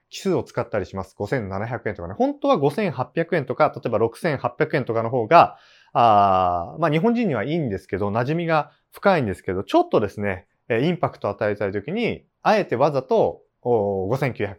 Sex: male